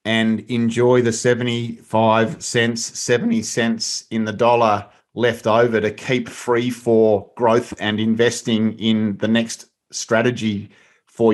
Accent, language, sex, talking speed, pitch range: Australian, English, male, 125 wpm, 110-125 Hz